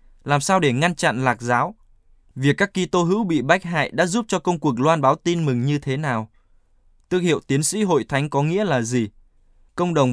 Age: 20-39